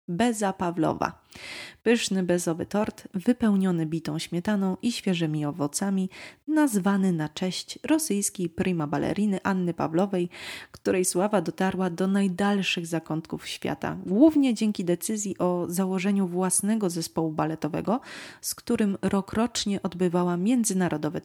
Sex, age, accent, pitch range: female, 20-39, native, 170-205 Hz